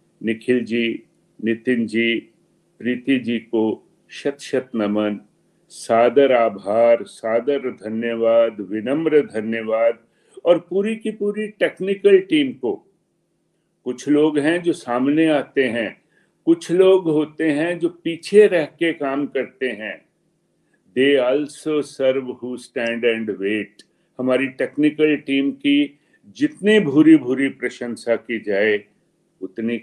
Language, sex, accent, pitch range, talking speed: Hindi, male, native, 115-155 Hz, 115 wpm